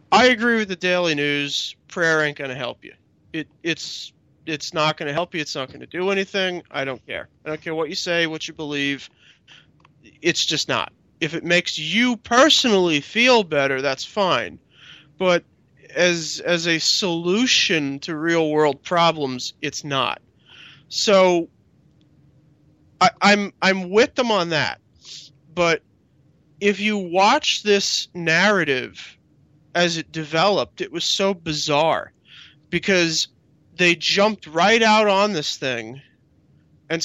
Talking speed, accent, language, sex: 145 wpm, American, English, male